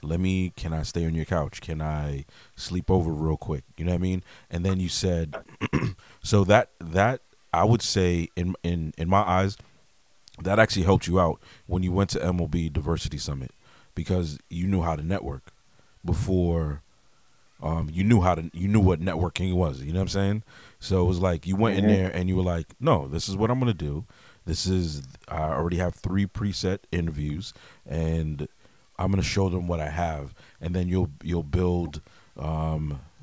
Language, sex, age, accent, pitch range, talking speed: English, male, 30-49, American, 80-95 Hz, 200 wpm